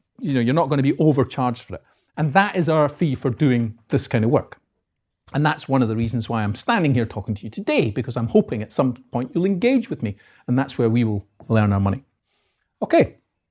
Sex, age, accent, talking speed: male, 40-59, British, 240 wpm